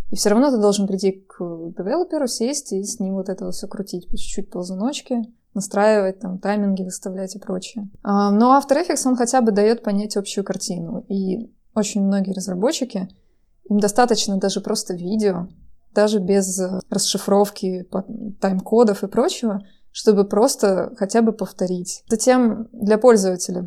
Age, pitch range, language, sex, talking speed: 20-39, 190-220 Hz, Russian, female, 150 wpm